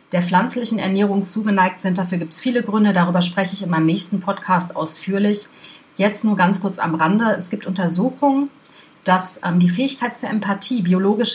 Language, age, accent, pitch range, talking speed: German, 40-59, German, 175-215 Hz, 175 wpm